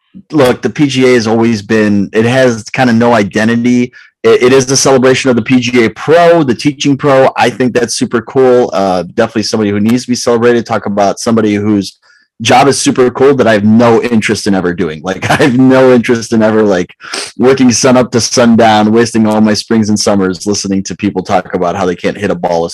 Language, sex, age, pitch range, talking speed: English, male, 30-49, 105-135 Hz, 220 wpm